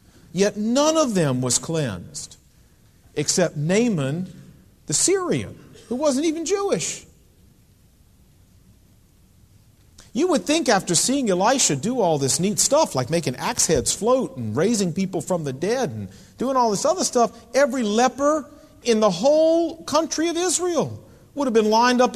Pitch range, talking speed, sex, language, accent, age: 190-295 Hz, 150 wpm, male, English, American, 50-69